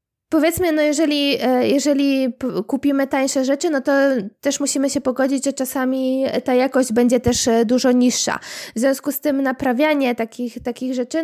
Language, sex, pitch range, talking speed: Polish, female, 245-280 Hz, 155 wpm